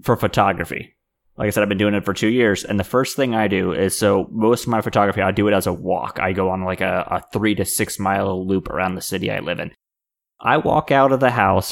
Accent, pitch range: American, 95-110 Hz